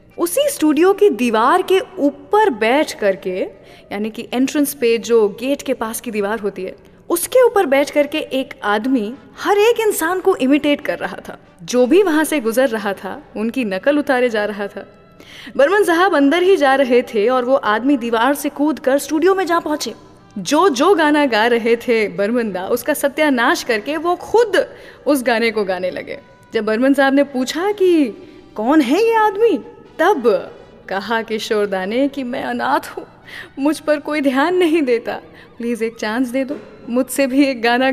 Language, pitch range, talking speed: English, 225-315 Hz, 135 wpm